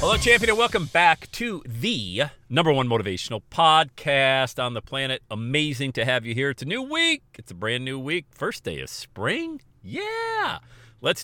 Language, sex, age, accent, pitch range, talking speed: English, male, 40-59, American, 105-150 Hz, 180 wpm